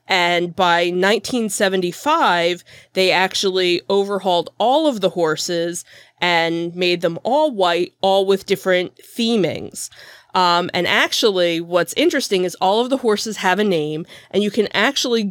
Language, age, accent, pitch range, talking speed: English, 30-49, American, 175-215 Hz, 140 wpm